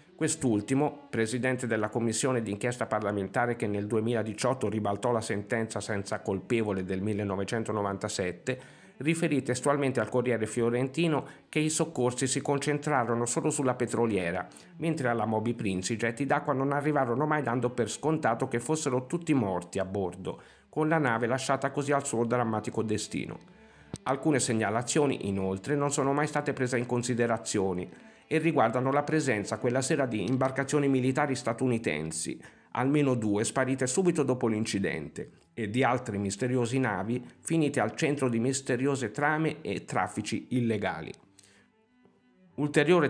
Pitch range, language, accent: 110-140 Hz, Italian, native